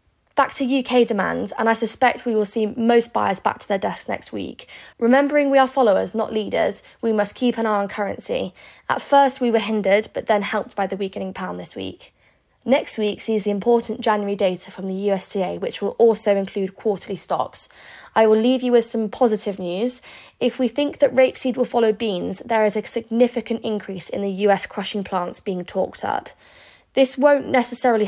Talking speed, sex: 200 wpm, female